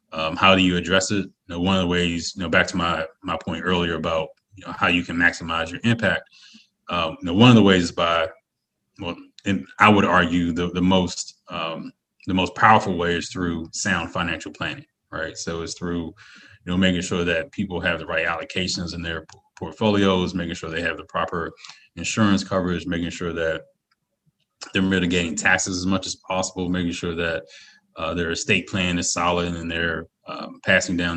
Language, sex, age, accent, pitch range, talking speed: English, male, 20-39, American, 85-95 Hz, 205 wpm